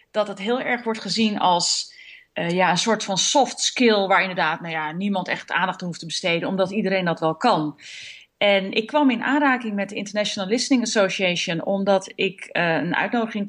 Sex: female